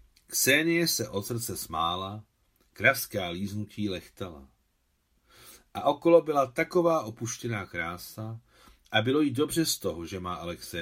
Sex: male